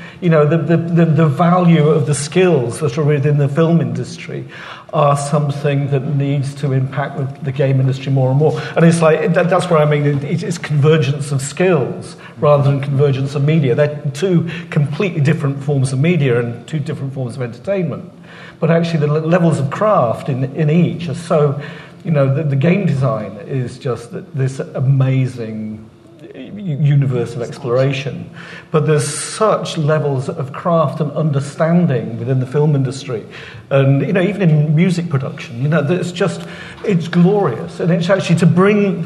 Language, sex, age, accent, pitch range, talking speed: English, male, 50-69, British, 140-170 Hz, 170 wpm